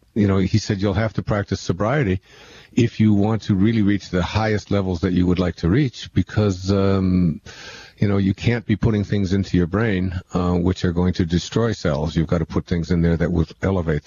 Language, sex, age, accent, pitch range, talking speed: English, male, 50-69, American, 85-105 Hz, 225 wpm